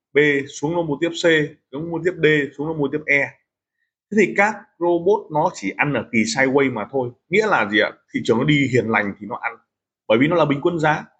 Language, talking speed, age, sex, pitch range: Vietnamese, 240 wpm, 20-39, male, 125-165 Hz